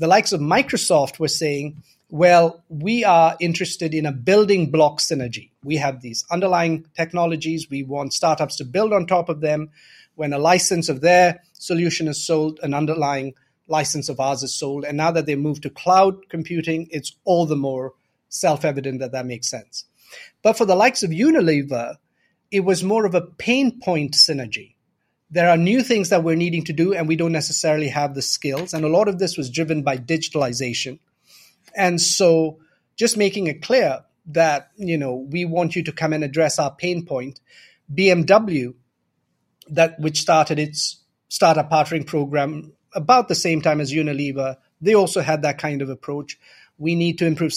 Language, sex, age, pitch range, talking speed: English, male, 30-49, 145-175 Hz, 180 wpm